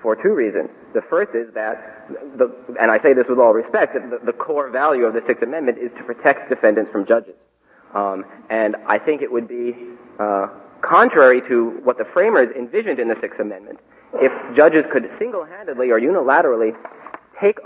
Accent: American